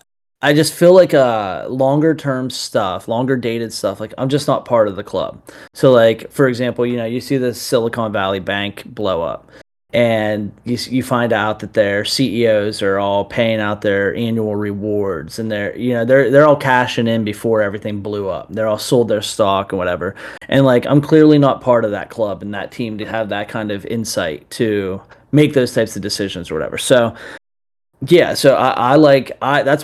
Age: 30-49